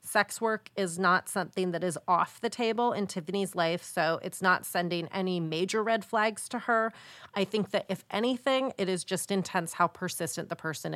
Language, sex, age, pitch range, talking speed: English, female, 30-49, 175-230 Hz, 195 wpm